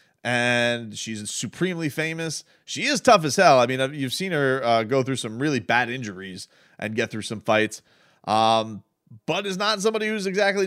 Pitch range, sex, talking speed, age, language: 110-140 Hz, male, 185 wpm, 30-49, English